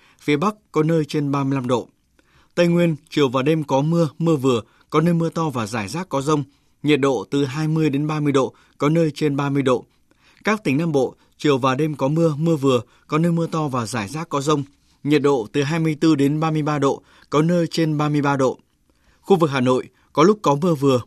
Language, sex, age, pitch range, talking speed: Vietnamese, male, 20-39, 135-160 Hz, 220 wpm